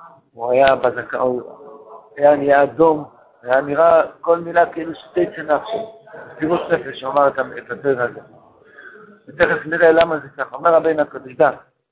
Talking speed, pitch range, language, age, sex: 155 wpm, 145-190 Hz, Hebrew, 60-79, male